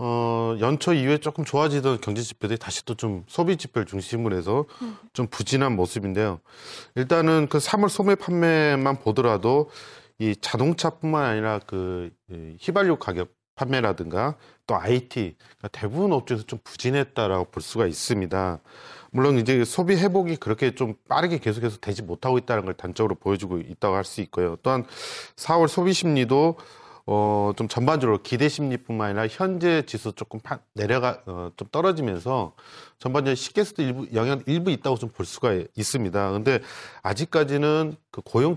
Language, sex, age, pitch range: Korean, male, 40-59, 105-150 Hz